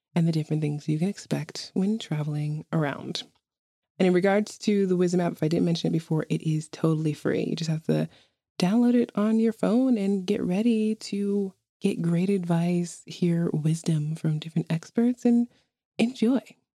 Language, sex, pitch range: English, female, 145-195 Hz